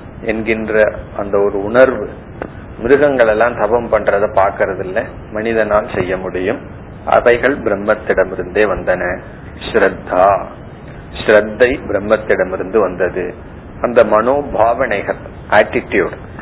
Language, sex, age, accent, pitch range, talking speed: Tamil, male, 30-49, native, 95-115 Hz, 75 wpm